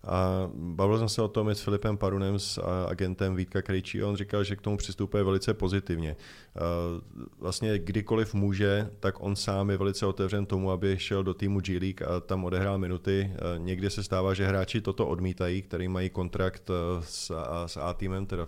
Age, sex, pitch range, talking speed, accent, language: 30-49, male, 90-100 Hz, 180 wpm, native, Czech